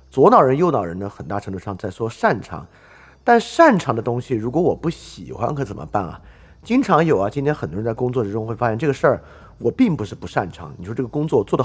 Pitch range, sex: 100-160 Hz, male